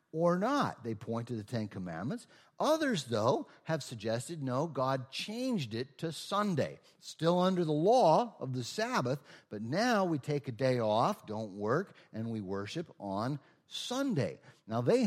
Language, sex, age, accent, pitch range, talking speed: English, male, 50-69, American, 110-155 Hz, 165 wpm